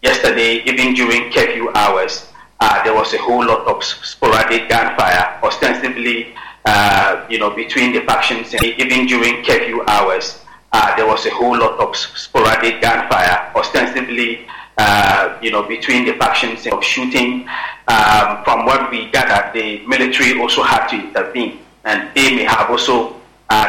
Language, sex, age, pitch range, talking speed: English, male, 40-59, 110-125 Hz, 150 wpm